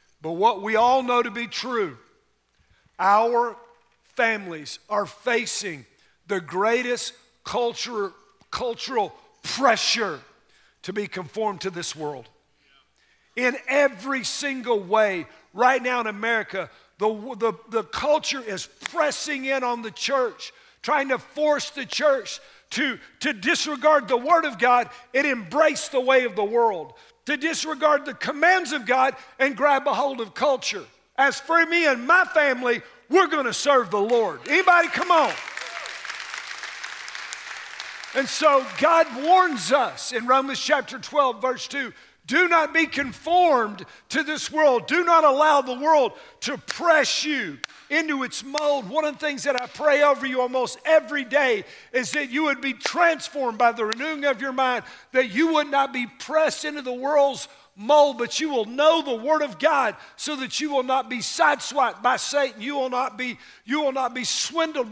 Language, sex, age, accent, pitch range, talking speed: English, male, 50-69, American, 240-300 Hz, 160 wpm